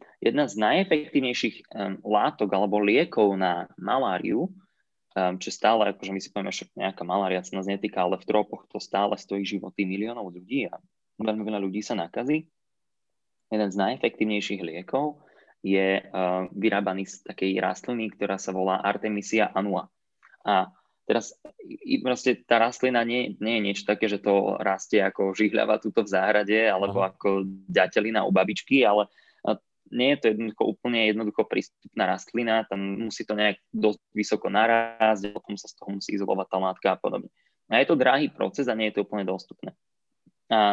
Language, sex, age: Slovak, male, 20-39